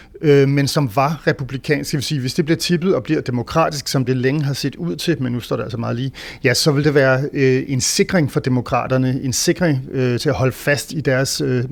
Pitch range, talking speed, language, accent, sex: 130-155 Hz, 250 wpm, Danish, native, male